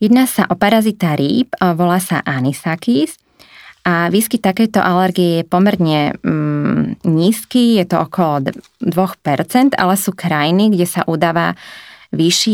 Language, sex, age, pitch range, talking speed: Slovak, female, 20-39, 160-190 Hz, 130 wpm